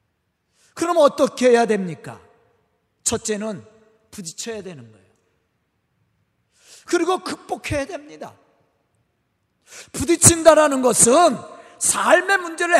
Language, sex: Korean, male